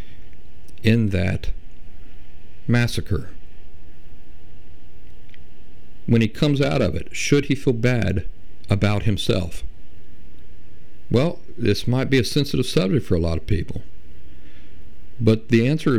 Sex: male